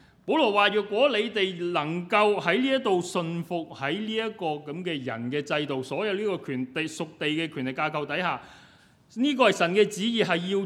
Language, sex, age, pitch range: Chinese, male, 30-49, 125-180 Hz